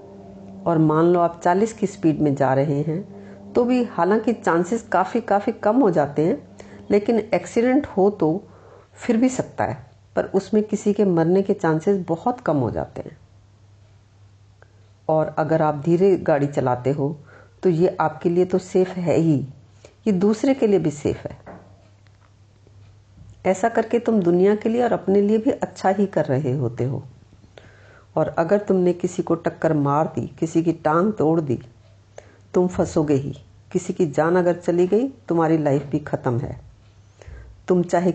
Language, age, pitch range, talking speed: Hindi, 50-69, 120-185 Hz, 170 wpm